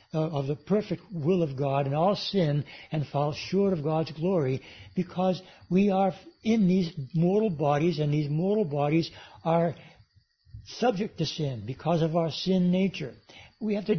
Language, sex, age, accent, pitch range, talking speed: English, male, 60-79, American, 150-185 Hz, 165 wpm